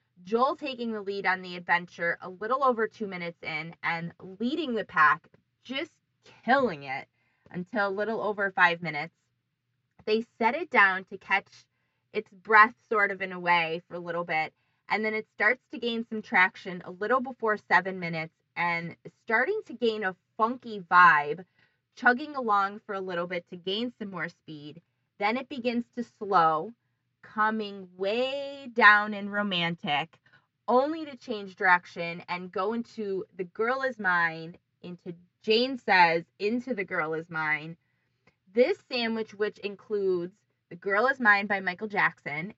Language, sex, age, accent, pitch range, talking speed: English, female, 20-39, American, 170-220 Hz, 160 wpm